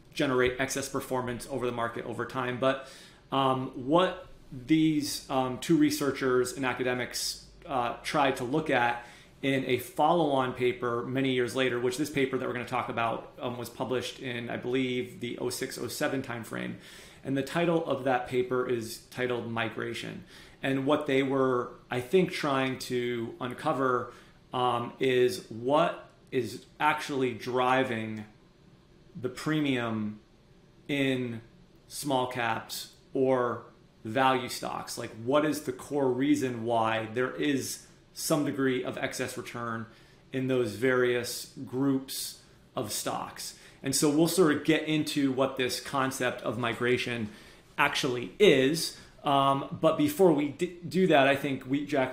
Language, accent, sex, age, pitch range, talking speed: English, American, male, 30-49, 125-140 Hz, 140 wpm